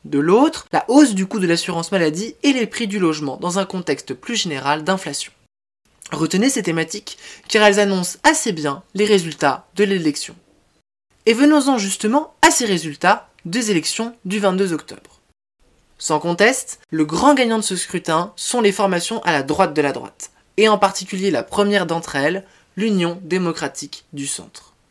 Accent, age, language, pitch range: French, 20-39, French, 175-225 Hz